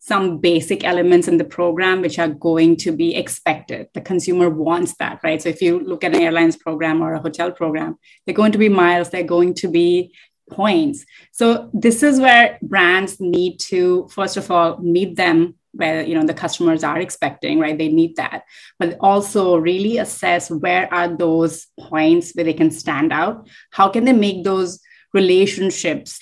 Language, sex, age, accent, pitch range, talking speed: English, female, 30-49, Indian, 165-200 Hz, 185 wpm